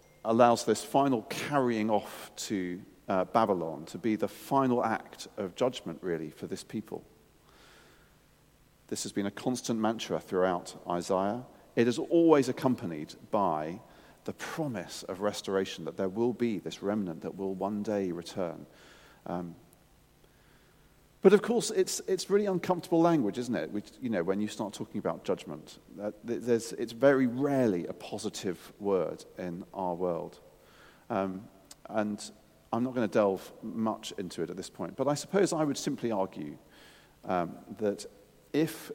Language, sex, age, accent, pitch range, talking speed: English, male, 40-59, British, 95-140 Hz, 155 wpm